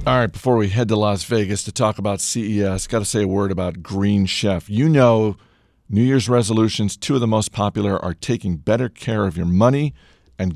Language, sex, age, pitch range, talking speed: English, male, 50-69, 95-115 Hz, 215 wpm